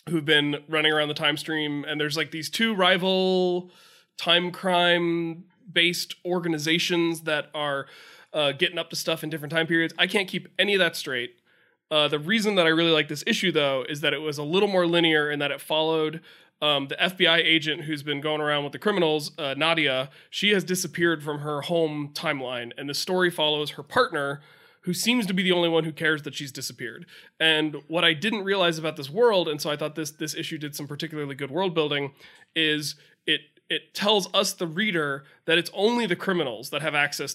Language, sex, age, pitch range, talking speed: English, male, 20-39, 145-170 Hz, 210 wpm